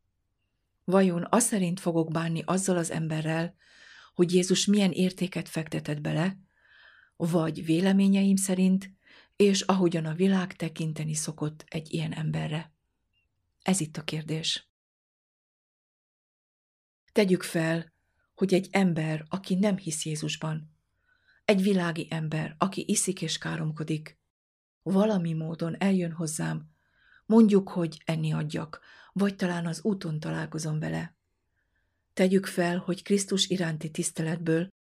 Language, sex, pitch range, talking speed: Hungarian, female, 155-185 Hz, 115 wpm